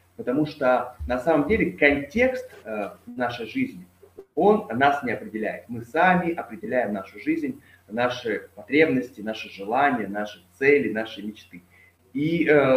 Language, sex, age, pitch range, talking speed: Russian, male, 20-39, 105-140 Hz, 125 wpm